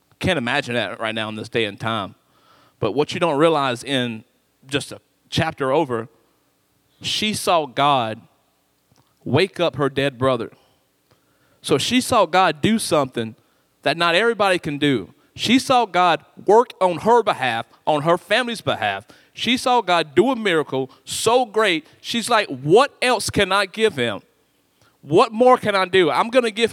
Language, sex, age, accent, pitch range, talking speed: English, male, 40-59, American, 140-215 Hz, 170 wpm